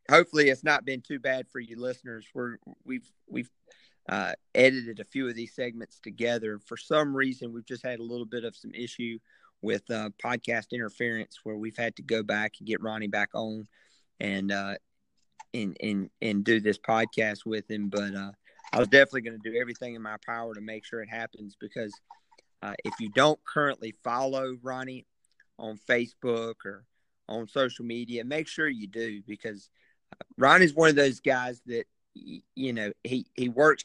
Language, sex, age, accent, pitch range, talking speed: English, male, 40-59, American, 110-130 Hz, 185 wpm